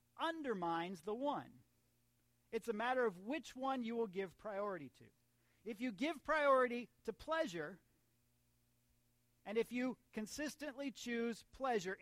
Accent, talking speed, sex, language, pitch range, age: American, 130 wpm, male, English, 155-225 Hz, 40-59